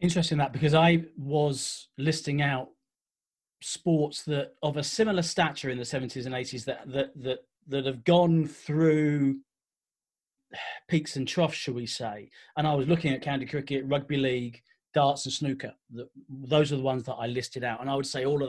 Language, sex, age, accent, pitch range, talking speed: English, male, 30-49, British, 135-165 Hz, 190 wpm